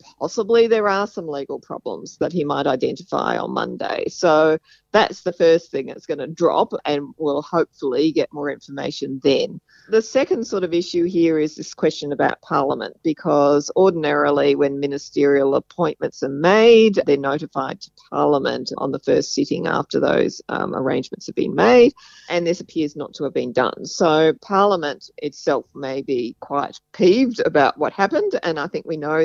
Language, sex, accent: English, female, Australian